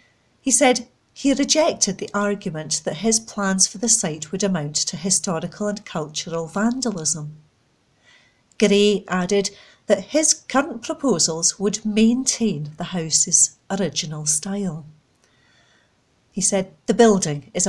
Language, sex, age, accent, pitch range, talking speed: English, female, 40-59, British, 165-225 Hz, 120 wpm